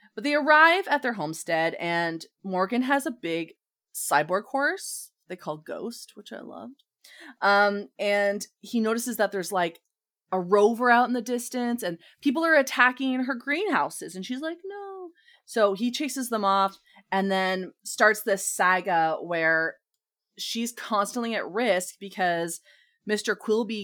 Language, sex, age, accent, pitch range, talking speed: English, female, 20-39, American, 175-240 Hz, 150 wpm